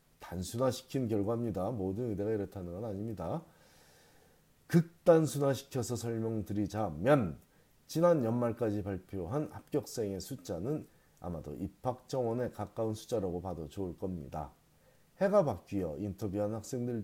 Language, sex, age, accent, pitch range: Korean, male, 40-59, native, 95-130 Hz